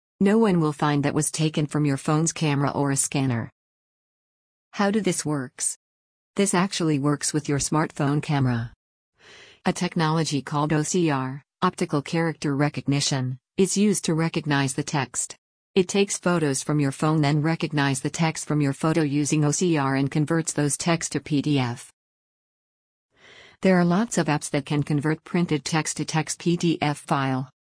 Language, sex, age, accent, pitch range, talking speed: English, female, 40-59, American, 140-170 Hz, 160 wpm